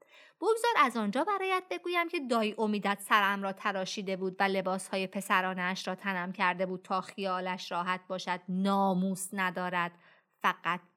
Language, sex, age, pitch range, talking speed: Persian, female, 30-49, 185-265 Hz, 140 wpm